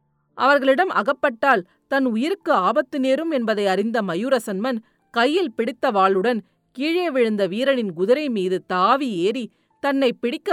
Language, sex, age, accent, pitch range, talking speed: Tamil, female, 40-59, native, 200-285 Hz, 120 wpm